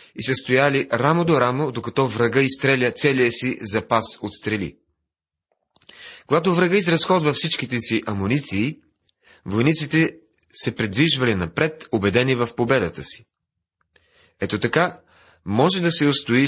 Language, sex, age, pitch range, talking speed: Bulgarian, male, 40-59, 105-140 Hz, 125 wpm